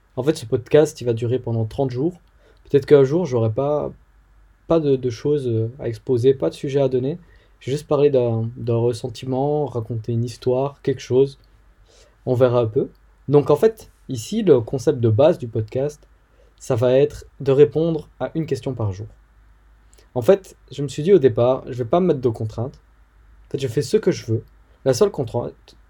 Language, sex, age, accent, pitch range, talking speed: French, male, 20-39, French, 115-145 Hz, 205 wpm